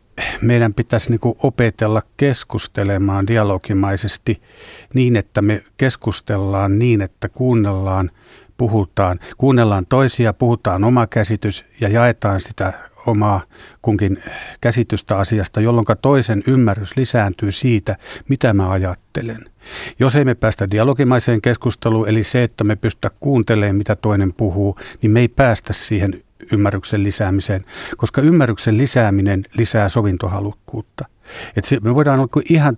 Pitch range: 100-120 Hz